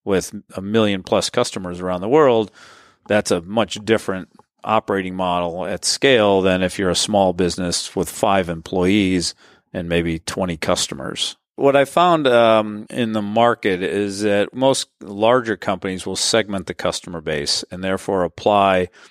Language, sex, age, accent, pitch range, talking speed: English, male, 40-59, American, 90-110 Hz, 155 wpm